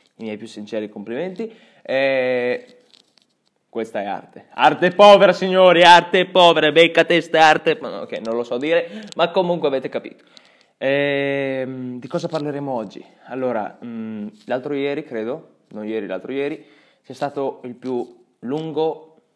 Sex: male